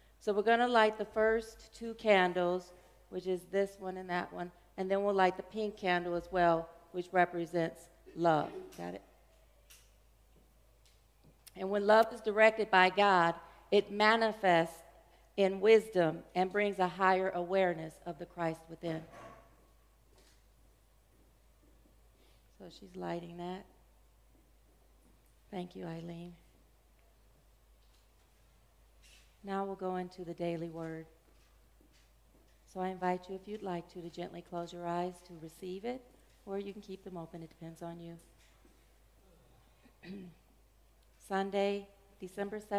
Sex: female